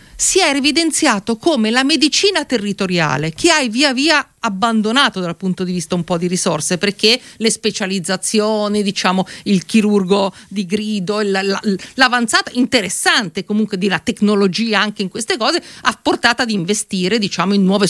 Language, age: Italian, 50-69